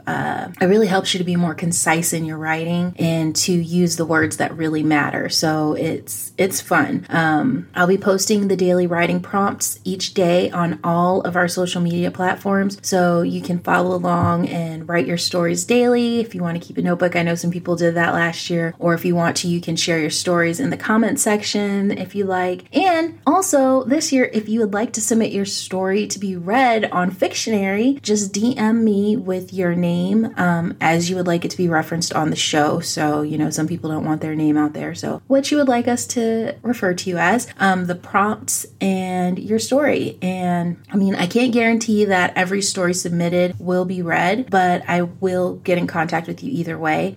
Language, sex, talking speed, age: English, female, 215 wpm, 30-49